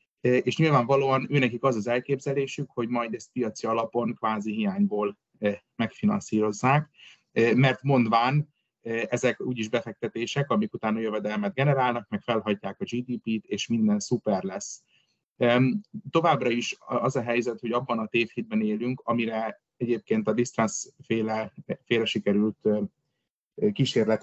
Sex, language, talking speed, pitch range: male, Hungarian, 120 wpm, 110-140 Hz